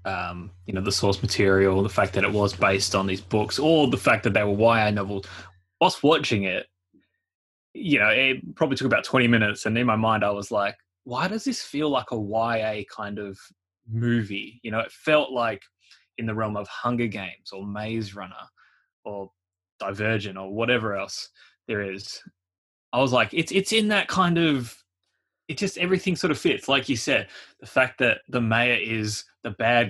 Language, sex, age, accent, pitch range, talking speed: English, male, 20-39, Australian, 100-120 Hz, 195 wpm